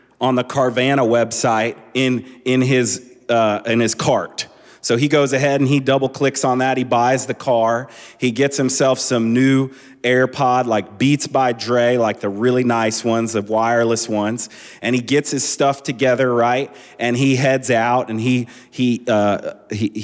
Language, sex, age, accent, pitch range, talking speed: English, male, 30-49, American, 115-135 Hz, 175 wpm